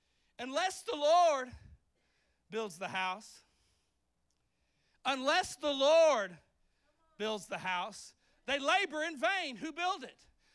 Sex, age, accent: male, 40-59, American